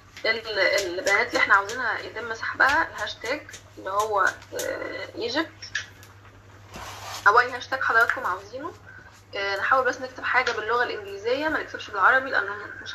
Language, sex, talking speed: Arabic, female, 135 wpm